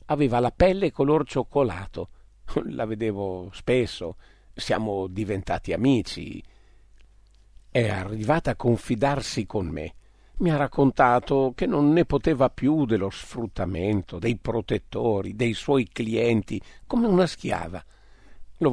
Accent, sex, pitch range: native, male, 100-140 Hz